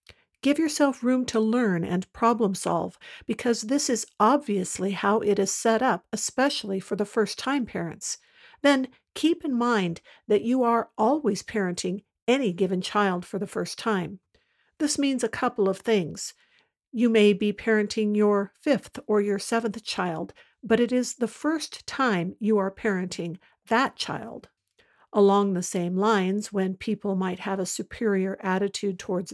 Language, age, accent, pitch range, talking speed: English, 50-69, American, 195-245 Hz, 155 wpm